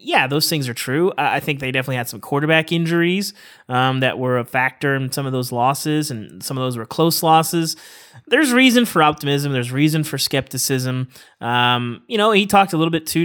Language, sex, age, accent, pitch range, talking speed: English, male, 30-49, American, 125-165 Hz, 215 wpm